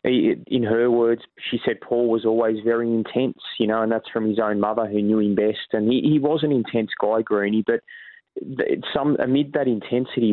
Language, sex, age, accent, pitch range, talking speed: English, male, 20-39, Australian, 110-120 Hz, 205 wpm